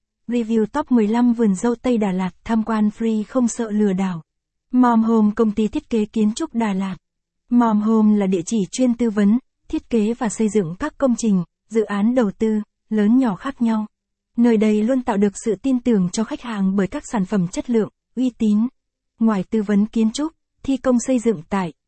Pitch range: 200-240 Hz